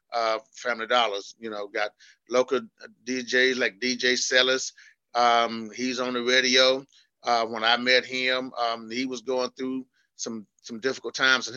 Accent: American